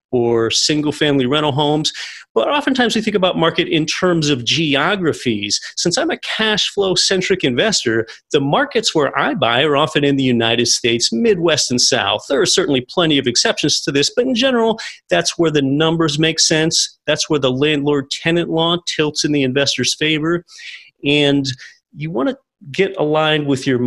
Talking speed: 180 wpm